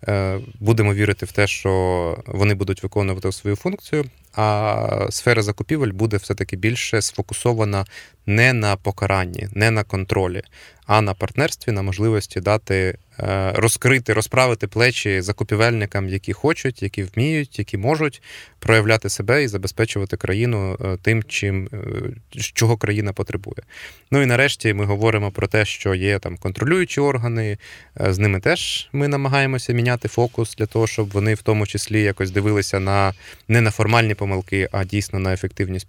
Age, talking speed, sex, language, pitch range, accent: 20-39, 145 wpm, male, Ukrainian, 95-120 Hz, native